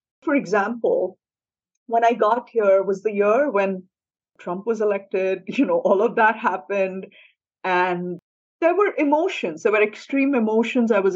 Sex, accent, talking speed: female, Indian, 155 wpm